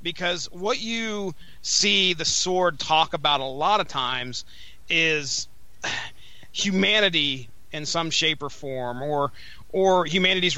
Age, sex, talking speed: 30-49, male, 125 wpm